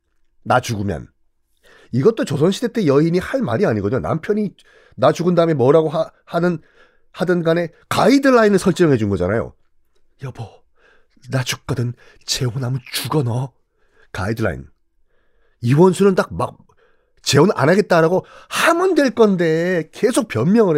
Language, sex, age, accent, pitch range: Korean, male, 40-59, native, 130-195 Hz